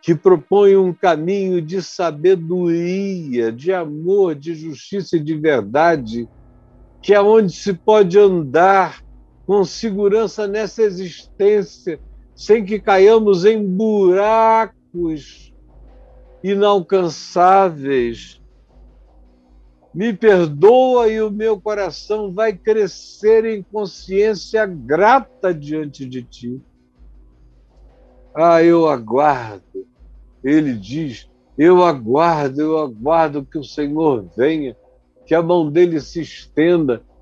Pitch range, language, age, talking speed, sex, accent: 145-205 Hz, Portuguese, 60-79, 100 wpm, male, Brazilian